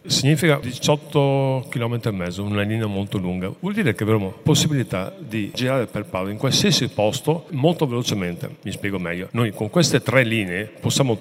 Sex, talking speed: male, 170 wpm